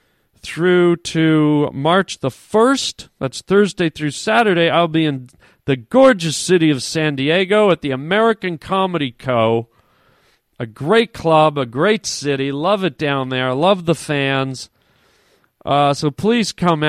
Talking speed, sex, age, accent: 145 wpm, male, 40-59, American